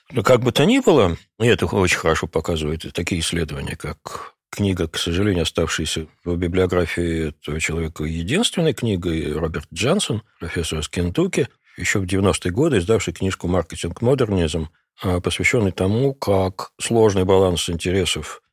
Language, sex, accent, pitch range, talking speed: Russian, male, native, 85-110 Hz, 135 wpm